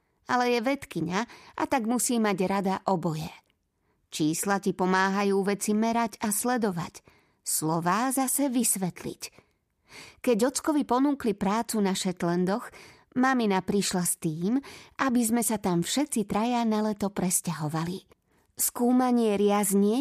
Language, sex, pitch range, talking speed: Slovak, female, 190-250 Hz, 125 wpm